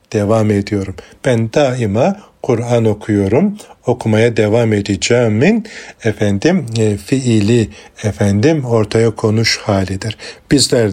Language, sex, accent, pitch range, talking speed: Turkish, male, native, 105-125 Hz, 95 wpm